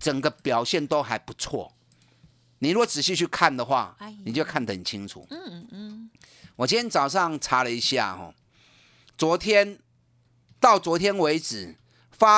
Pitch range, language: 125-200 Hz, Chinese